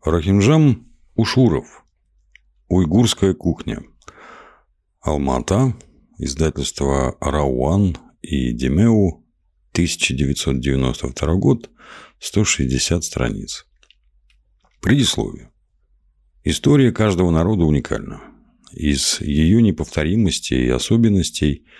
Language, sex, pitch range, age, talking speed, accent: Russian, male, 70-95 Hz, 50-69, 65 wpm, native